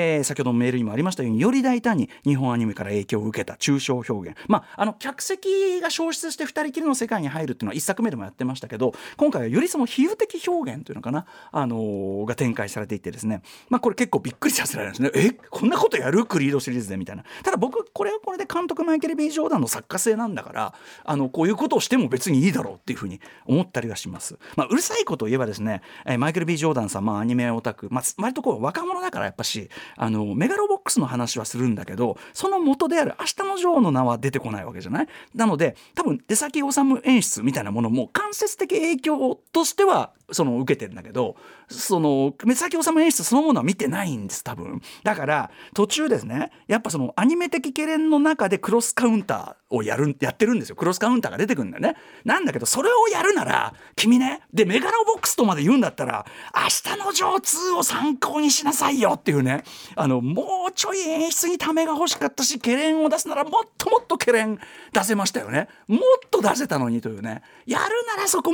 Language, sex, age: Japanese, male, 40-59